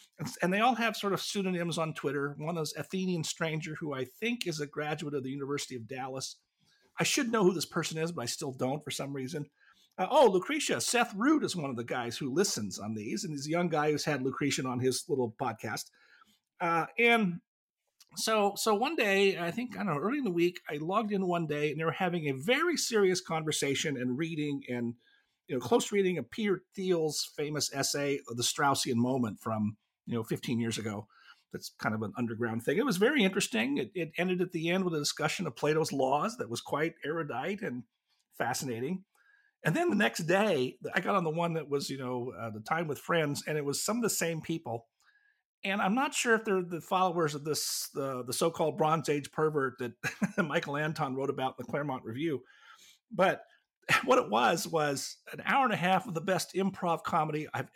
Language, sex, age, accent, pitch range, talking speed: English, male, 50-69, American, 140-190 Hz, 220 wpm